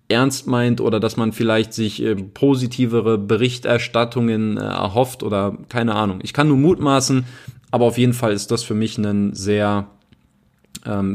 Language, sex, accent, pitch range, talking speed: German, male, German, 105-125 Hz, 160 wpm